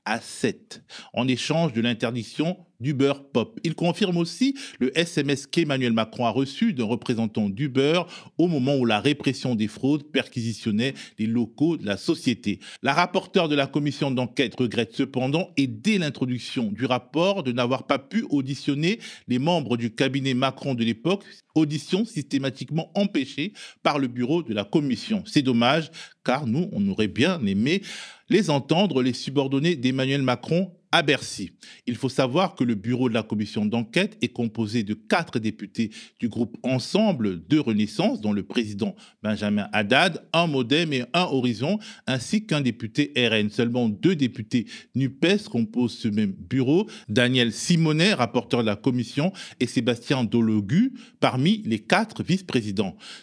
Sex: male